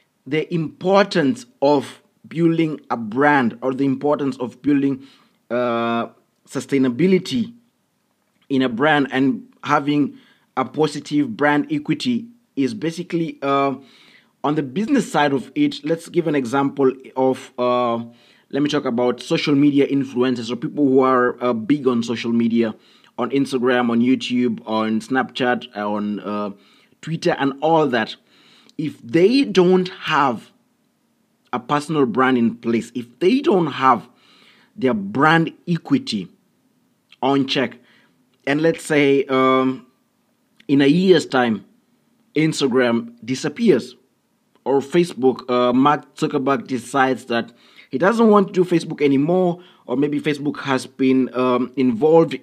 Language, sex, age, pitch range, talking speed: English, male, 30-49, 130-165 Hz, 130 wpm